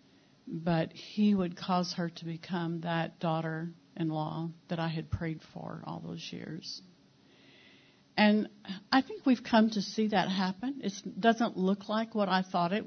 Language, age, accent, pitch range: English, 60-79, American, 165-200 Hz